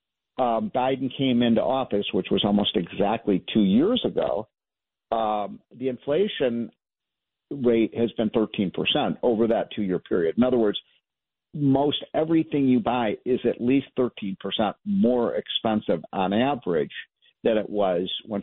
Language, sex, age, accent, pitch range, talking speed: English, male, 50-69, American, 105-145 Hz, 145 wpm